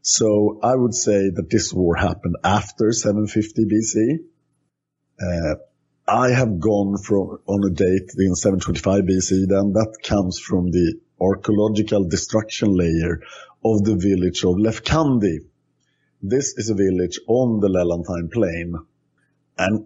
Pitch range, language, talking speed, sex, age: 90-115 Hz, English, 135 wpm, male, 50-69